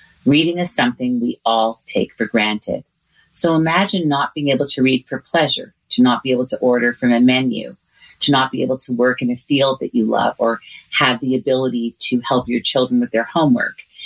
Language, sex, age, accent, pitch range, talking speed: English, female, 40-59, American, 120-150 Hz, 210 wpm